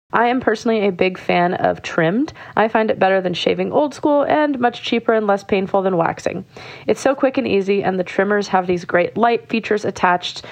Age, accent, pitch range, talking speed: 30-49, American, 190-240 Hz, 215 wpm